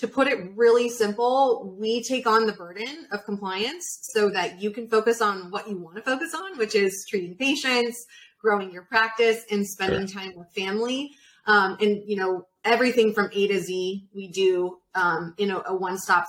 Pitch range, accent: 195-240 Hz, American